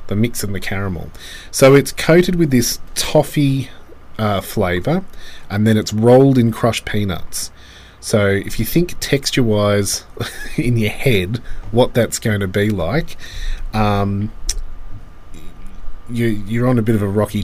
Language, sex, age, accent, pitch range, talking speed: English, male, 30-49, Australian, 95-120 Hz, 145 wpm